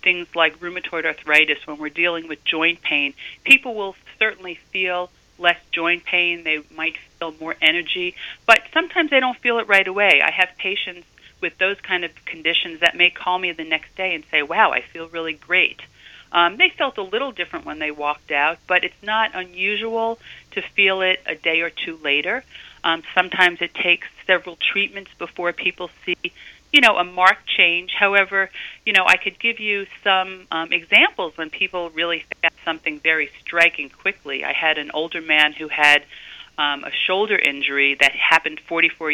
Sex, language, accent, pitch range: female, English, American, 155-185 Hz